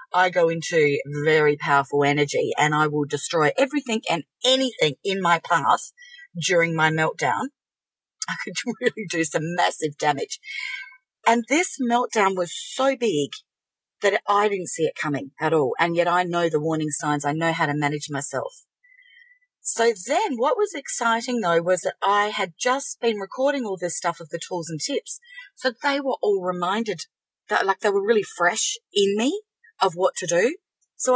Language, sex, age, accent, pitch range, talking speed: English, female, 40-59, Australian, 165-270 Hz, 175 wpm